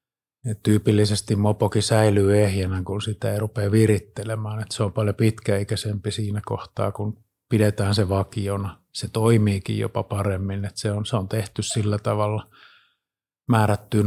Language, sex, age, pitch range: Finnish, male, 30-49, 105-115 Hz